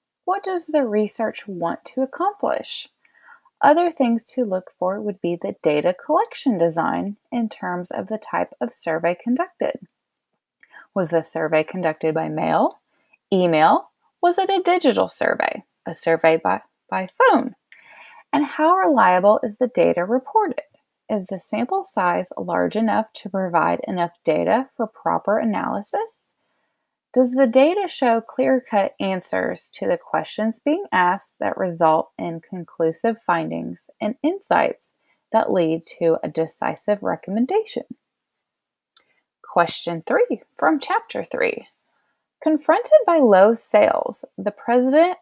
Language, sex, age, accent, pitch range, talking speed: English, female, 20-39, American, 180-295 Hz, 130 wpm